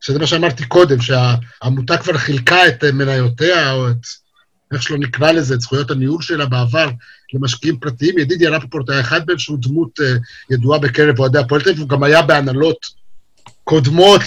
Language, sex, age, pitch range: Hebrew, male, 50-69, 145-195 Hz